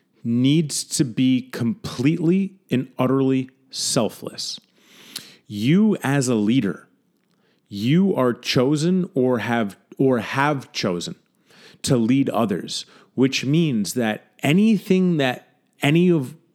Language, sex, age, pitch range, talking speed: English, male, 30-49, 115-165 Hz, 105 wpm